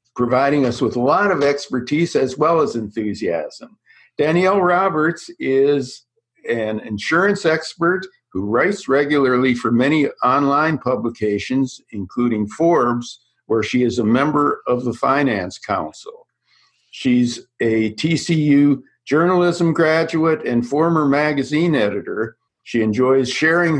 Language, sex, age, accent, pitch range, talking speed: English, male, 60-79, American, 115-150 Hz, 120 wpm